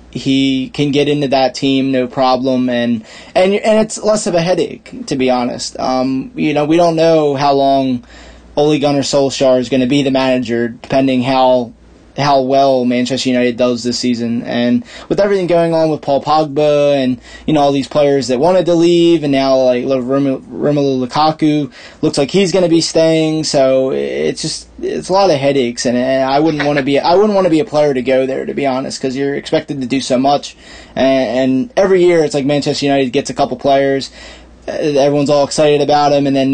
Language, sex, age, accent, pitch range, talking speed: English, male, 20-39, American, 130-160 Hz, 210 wpm